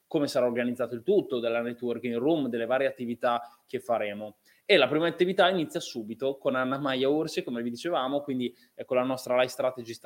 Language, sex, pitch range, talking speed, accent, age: Italian, male, 125-145 Hz, 190 wpm, native, 20-39